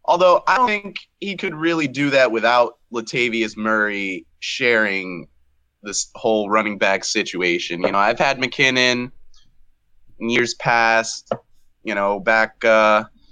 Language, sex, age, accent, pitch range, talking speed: English, male, 20-39, American, 100-125 Hz, 135 wpm